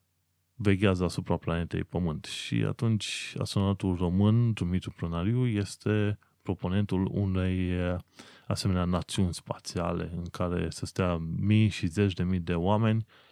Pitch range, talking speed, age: 90-110 Hz, 120 wpm, 20-39